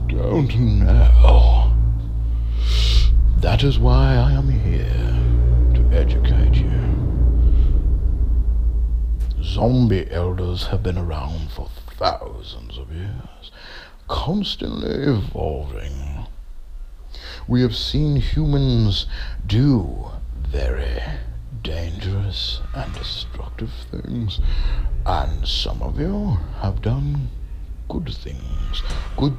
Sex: male